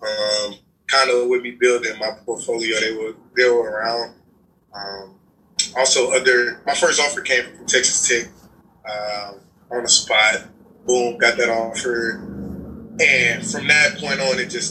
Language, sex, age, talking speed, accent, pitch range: English, male, 20-39, 150 wpm, American, 110-170 Hz